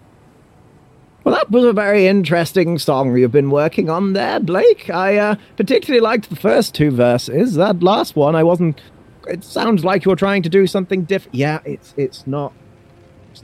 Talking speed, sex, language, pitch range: 185 wpm, male, English, 120-180 Hz